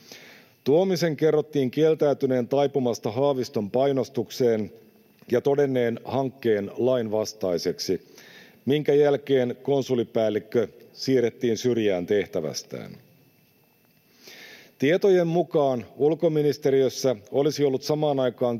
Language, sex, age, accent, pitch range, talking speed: Finnish, male, 50-69, native, 120-145 Hz, 75 wpm